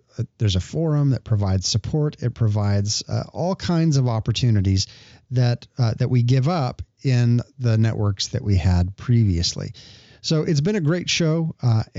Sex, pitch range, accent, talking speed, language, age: male, 110-145 Hz, American, 165 wpm, English, 40-59